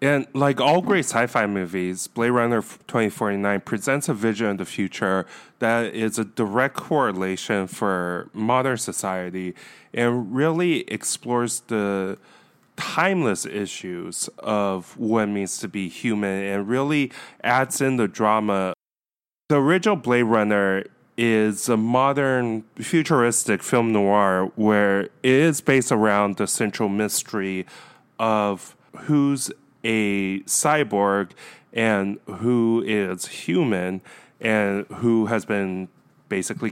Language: English